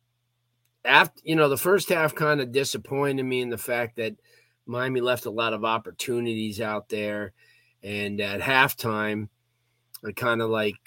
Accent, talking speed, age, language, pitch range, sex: American, 160 wpm, 40-59, English, 110-145 Hz, male